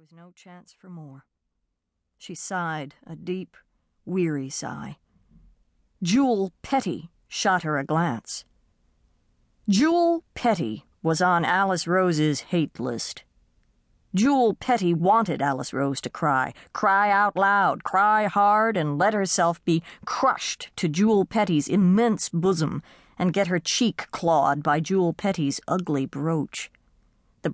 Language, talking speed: English, 125 wpm